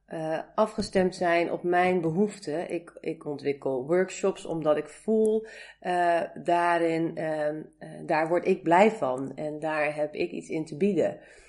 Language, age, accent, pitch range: Dutch, 40-59, Dutch, 155-195 Hz